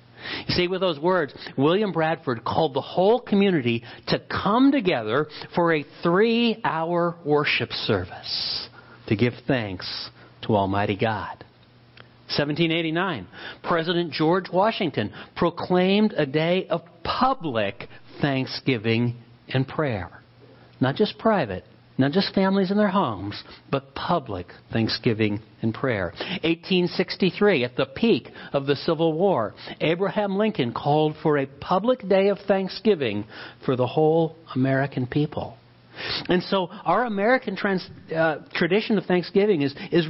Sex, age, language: male, 60-79, English